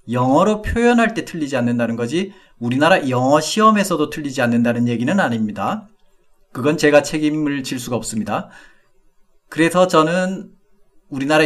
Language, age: Korean, 40-59